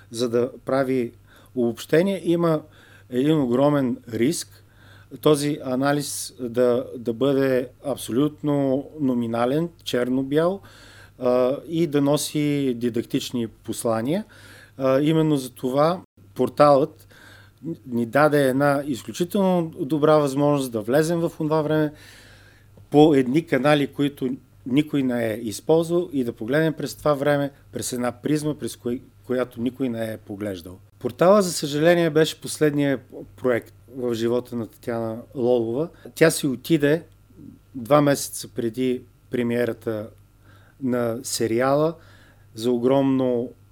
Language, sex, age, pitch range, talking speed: Bulgarian, male, 40-59, 115-145 Hz, 115 wpm